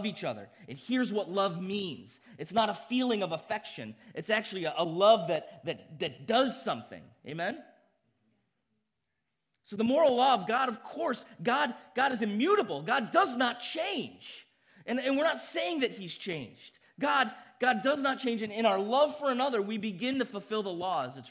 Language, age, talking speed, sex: English, 30-49, 185 wpm, male